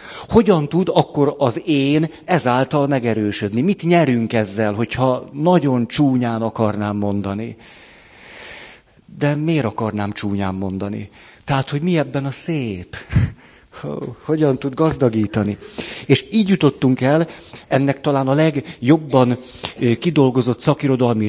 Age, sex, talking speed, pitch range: 50-69, male, 110 wpm, 115-150 Hz